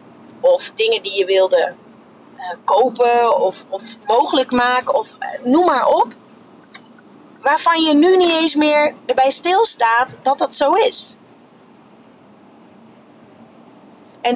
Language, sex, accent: Dutch, female, Dutch